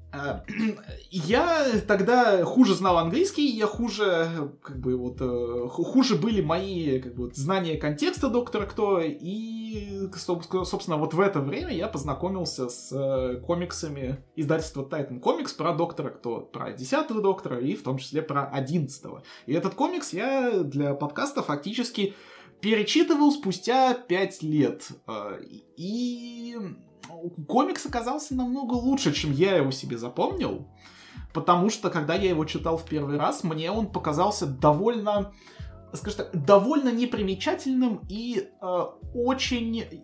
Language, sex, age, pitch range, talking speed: Russian, male, 20-39, 150-220 Hz, 125 wpm